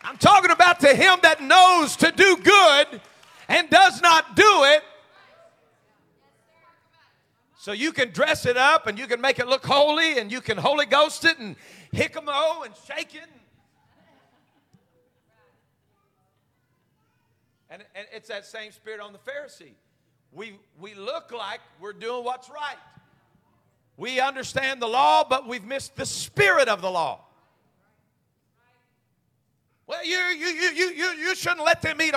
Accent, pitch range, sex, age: American, 215-320 Hz, male, 50-69